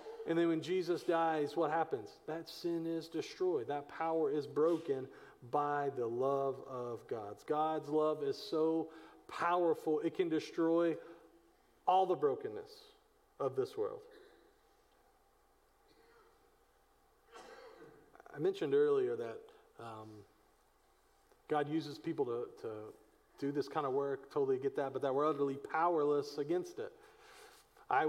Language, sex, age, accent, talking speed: English, male, 40-59, American, 130 wpm